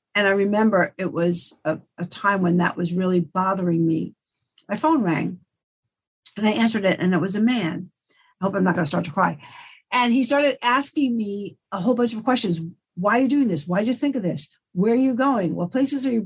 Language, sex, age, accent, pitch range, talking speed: English, female, 50-69, American, 185-245 Hz, 235 wpm